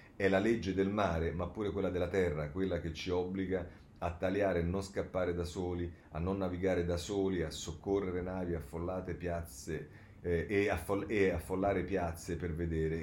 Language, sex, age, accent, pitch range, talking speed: Italian, male, 40-59, native, 85-105 Hz, 170 wpm